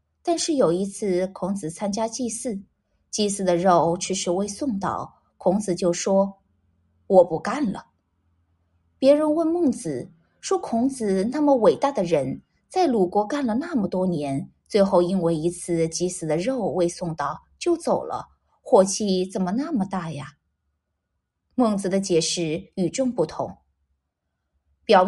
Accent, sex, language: native, female, Chinese